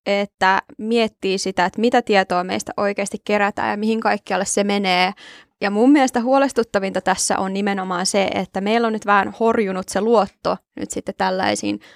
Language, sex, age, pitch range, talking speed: Finnish, female, 20-39, 190-220 Hz, 165 wpm